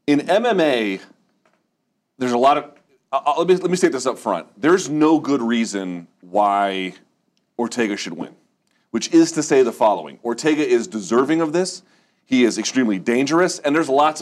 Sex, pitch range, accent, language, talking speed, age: male, 100-130 Hz, American, English, 175 wpm, 30-49